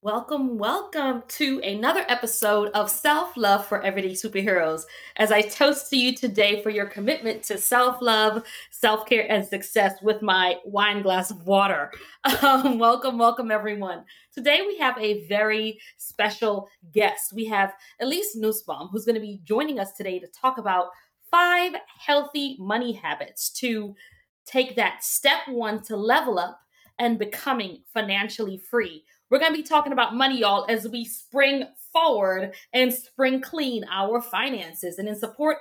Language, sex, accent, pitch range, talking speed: English, female, American, 205-270 Hz, 155 wpm